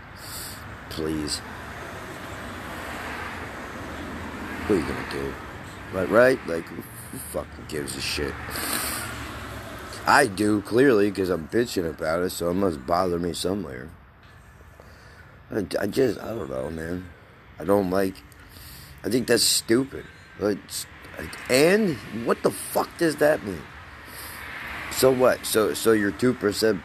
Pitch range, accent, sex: 85-115 Hz, American, male